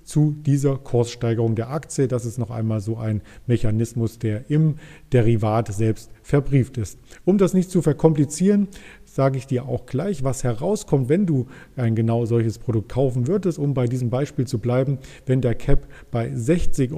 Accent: German